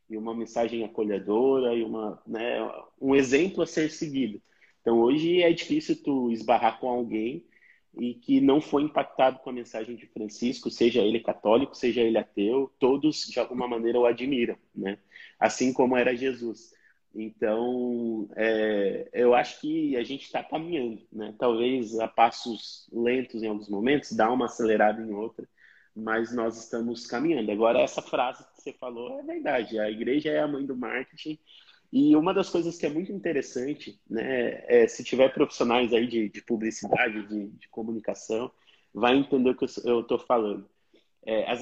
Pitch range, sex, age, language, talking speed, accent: 110-145 Hz, male, 20-39, Portuguese, 165 wpm, Brazilian